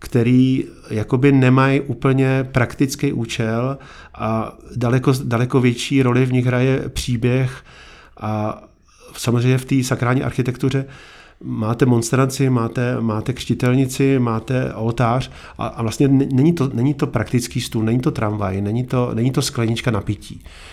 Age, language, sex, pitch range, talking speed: 40-59, Czech, male, 115-135 Hz, 135 wpm